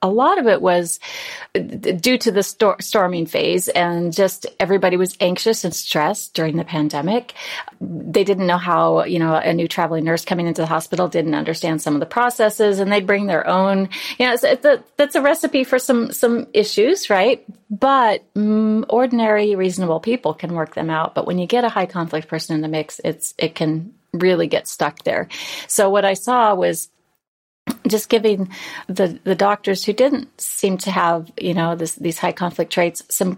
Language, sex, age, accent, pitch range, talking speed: English, female, 30-49, American, 170-230 Hz, 195 wpm